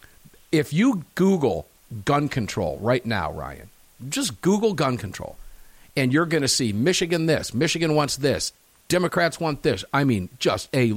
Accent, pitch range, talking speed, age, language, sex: American, 125-190 Hz, 160 wpm, 50-69, English, male